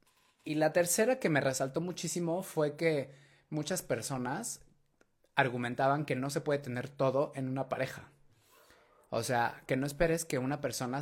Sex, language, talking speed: male, Spanish, 160 wpm